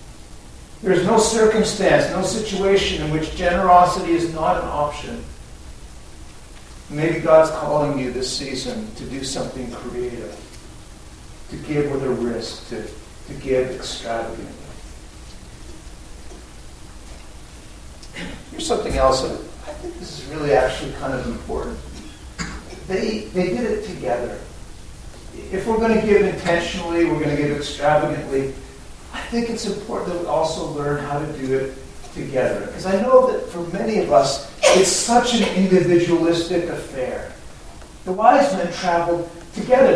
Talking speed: 135 wpm